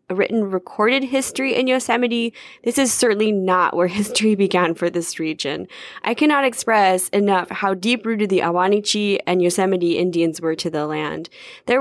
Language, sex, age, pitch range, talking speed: English, female, 10-29, 170-225 Hz, 160 wpm